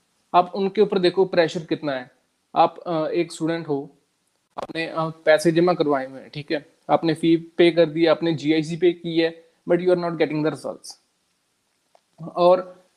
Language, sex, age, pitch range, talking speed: Punjabi, male, 20-39, 160-190 Hz, 175 wpm